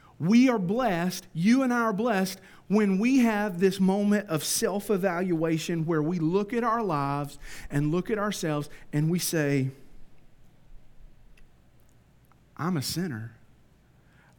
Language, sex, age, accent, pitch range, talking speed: English, male, 40-59, American, 155-210 Hz, 130 wpm